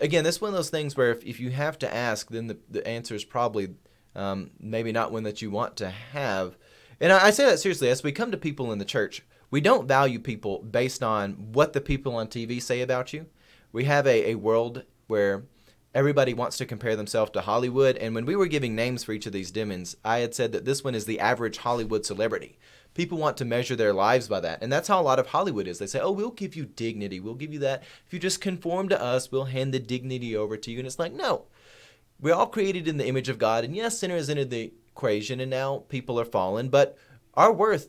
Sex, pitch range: male, 110-150 Hz